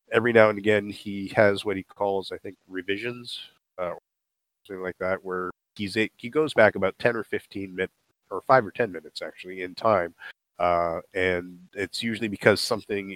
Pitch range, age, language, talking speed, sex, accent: 90-100 Hz, 30-49, English, 185 wpm, male, American